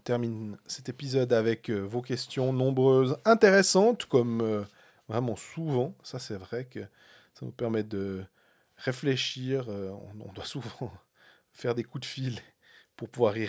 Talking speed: 140 wpm